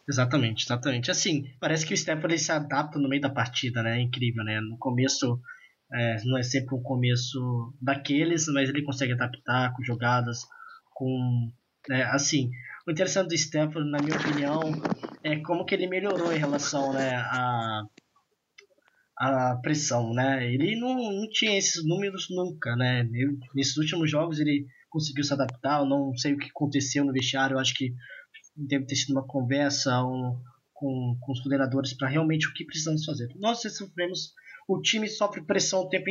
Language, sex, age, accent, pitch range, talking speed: Portuguese, male, 20-39, Brazilian, 130-185 Hz, 170 wpm